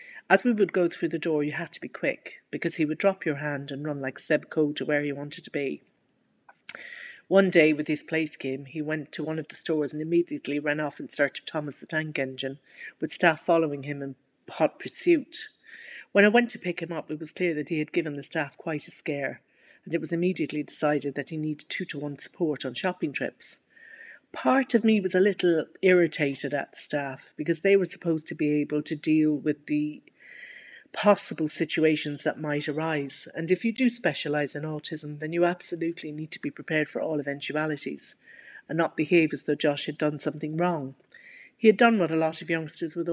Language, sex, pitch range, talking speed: English, female, 150-185 Hz, 215 wpm